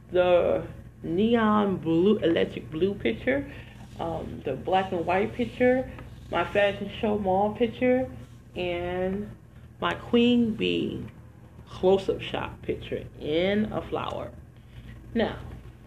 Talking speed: 105 wpm